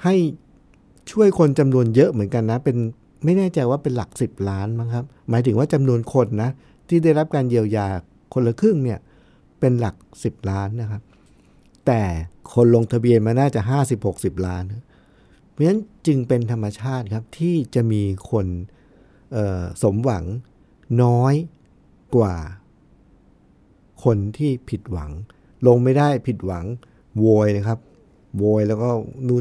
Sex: male